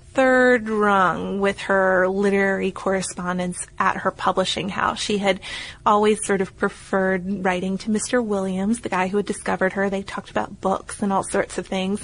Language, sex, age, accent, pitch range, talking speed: English, female, 20-39, American, 195-240 Hz, 175 wpm